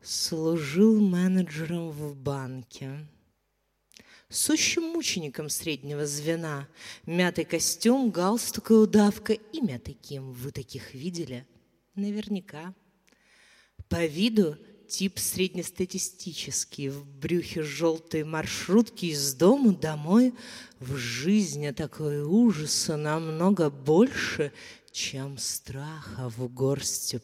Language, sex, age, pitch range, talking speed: Russian, female, 30-49, 130-190 Hz, 90 wpm